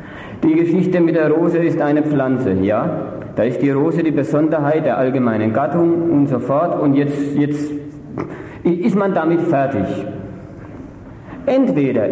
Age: 50-69